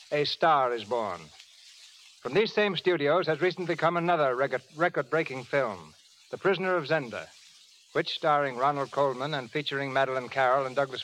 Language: English